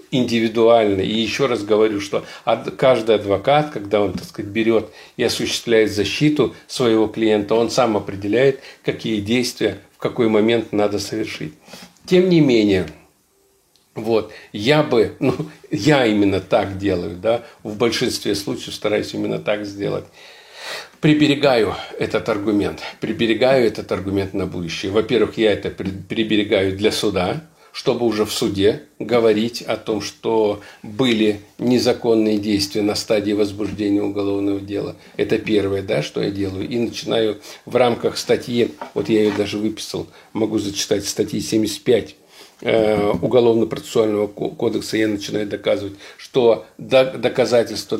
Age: 50-69